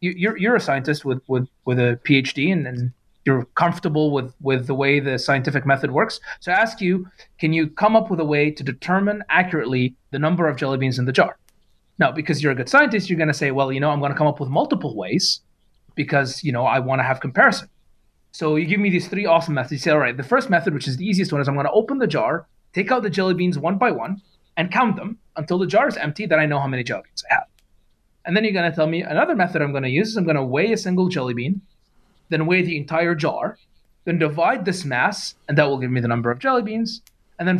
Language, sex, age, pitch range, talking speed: English, male, 30-49, 140-185 Hz, 265 wpm